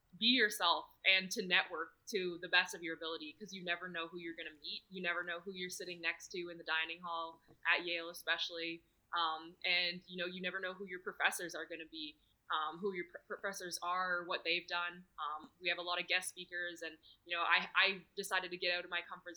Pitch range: 165-190 Hz